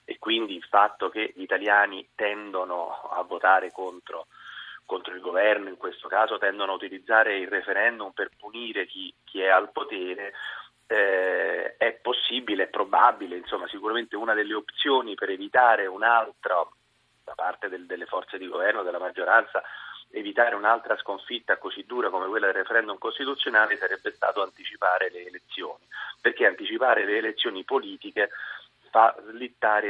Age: 30-49